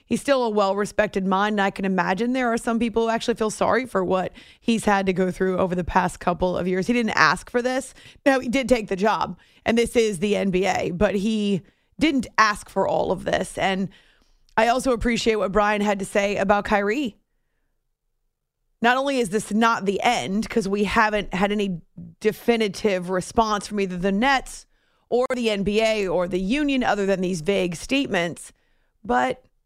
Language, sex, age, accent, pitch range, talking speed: English, female, 30-49, American, 195-235 Hz, 190 wpm